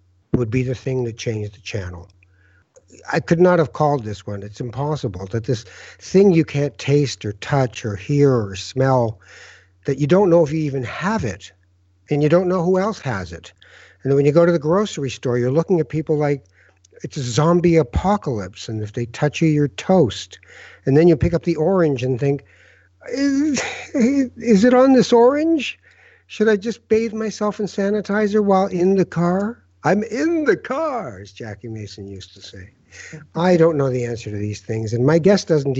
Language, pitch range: English, 105-165 Hz